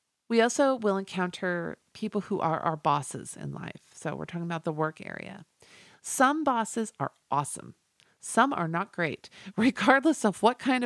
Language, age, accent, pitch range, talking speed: English, 50-69, American, 160-205 Hz, 165 wpm